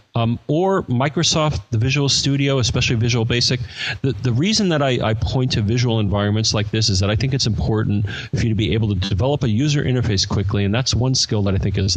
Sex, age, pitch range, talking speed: male, 40-59, 100-125 Hz, 230 wpm